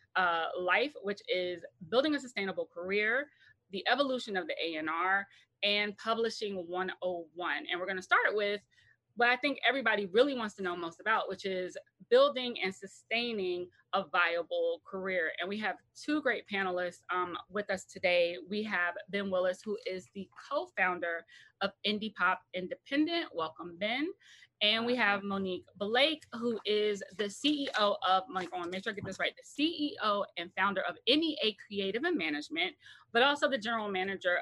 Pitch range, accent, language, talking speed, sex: 180-230 Hz, American, English, 170 wpm, female